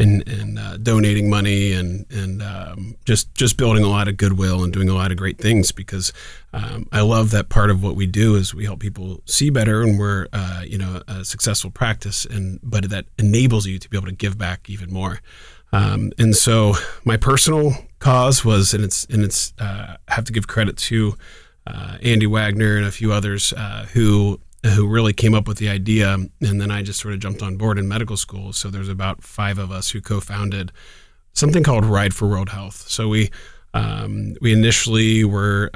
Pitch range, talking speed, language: 95-110 Hz, 210 wpm, English